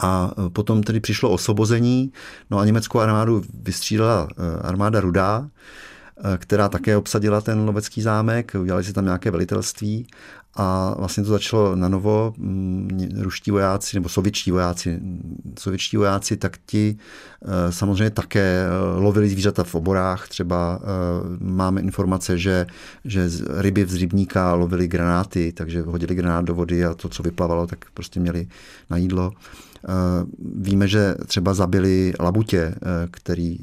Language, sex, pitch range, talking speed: Czech, male, 90-100 Hz, 135 wpm